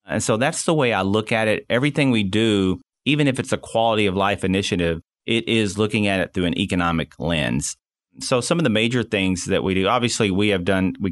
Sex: male